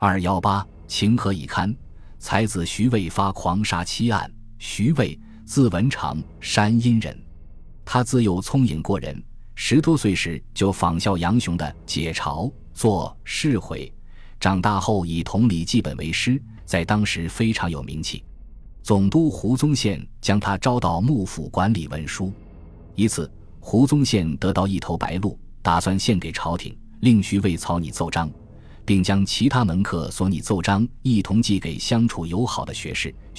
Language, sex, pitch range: Chinese, male, 85-110 Hz